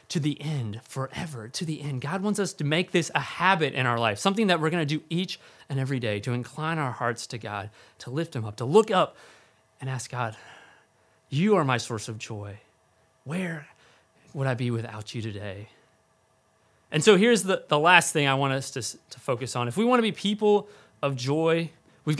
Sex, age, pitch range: male, 30-49, 120-195 Hz